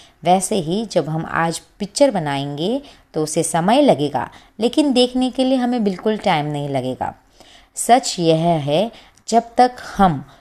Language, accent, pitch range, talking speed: Hindi, native, 160-245 Hz, 150 wpm